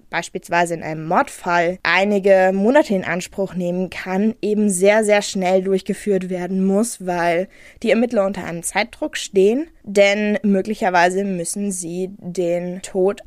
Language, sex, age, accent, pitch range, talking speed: German, female, 20-39, German, 185-235 Hz, 135 wpm